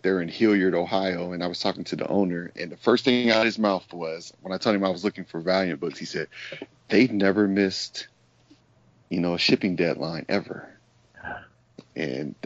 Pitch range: 85-105 Hz